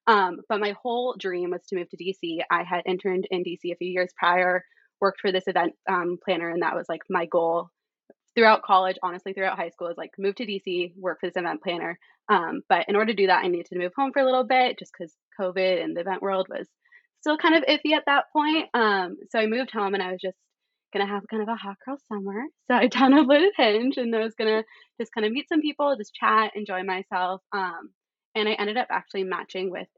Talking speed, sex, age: 250 wpm, female, 20-39